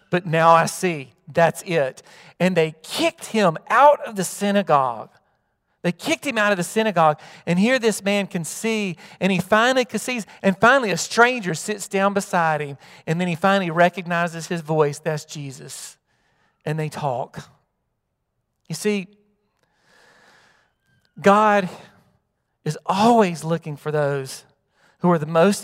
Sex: male